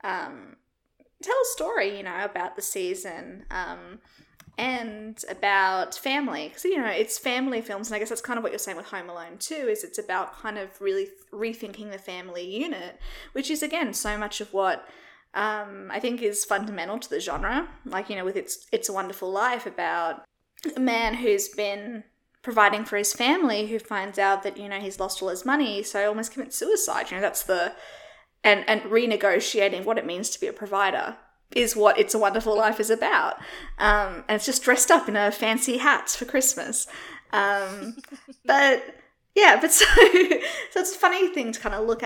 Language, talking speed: English, 200 wpm